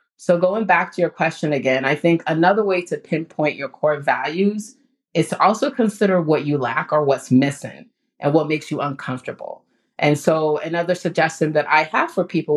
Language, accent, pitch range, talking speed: English, American, 145-175 Hz, 190 wpm